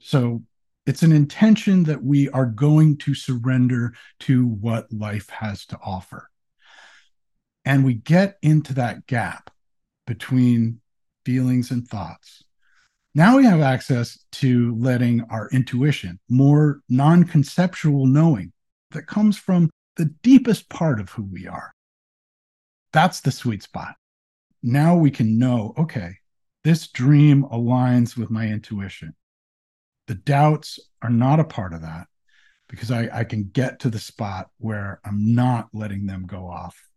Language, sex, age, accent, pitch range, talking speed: English, male, 50-69, American, 110-150 Hz, 140 wpm